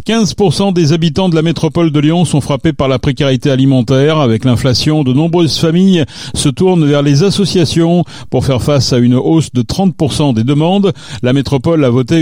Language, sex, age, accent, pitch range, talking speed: French, male, 40-59, French, 125-165 Hz, 185 wpm